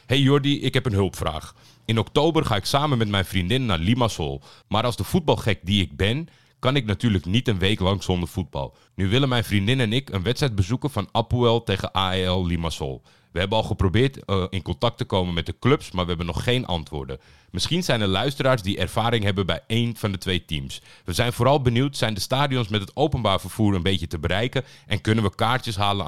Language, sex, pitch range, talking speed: Dutch, male, 90-120 Hz, 225 wpm